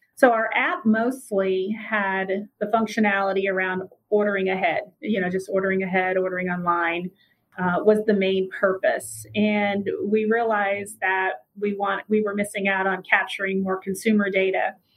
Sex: female